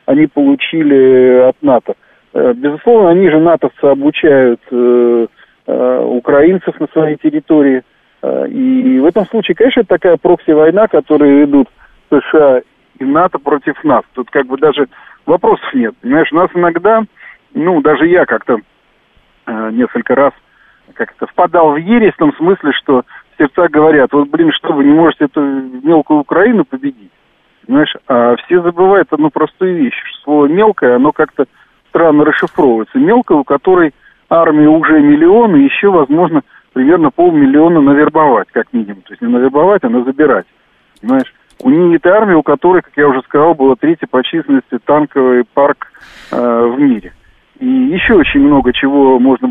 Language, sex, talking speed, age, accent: Russian, male, 155 wpm, 50-69, native